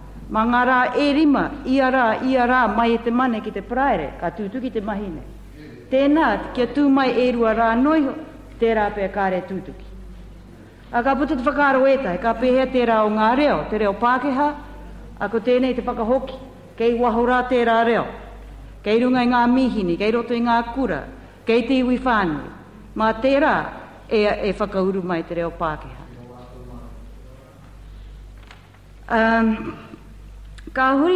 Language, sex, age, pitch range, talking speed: English, female, 60-79, 170-245 Hz, 125 wpm